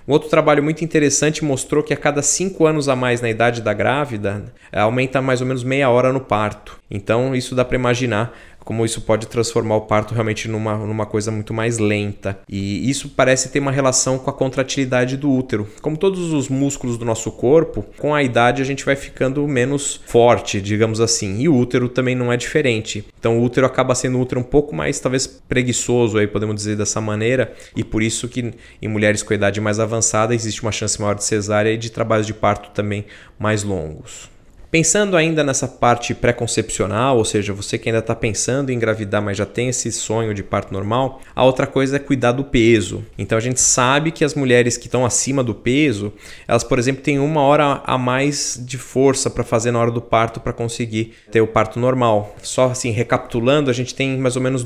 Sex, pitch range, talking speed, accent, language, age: male, 110-130 Hz, 210 wpm, Brazilian, Portuguese, 20-39